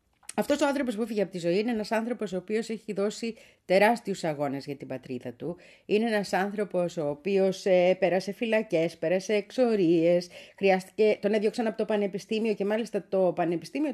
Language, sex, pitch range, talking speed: Greek, female, 175-260 Hz, 170 wpm